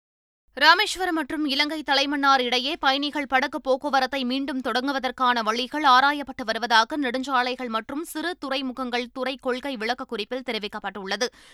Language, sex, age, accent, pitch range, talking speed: Tamil, female, 20-39, native, 170-275 Hz, 110 wpm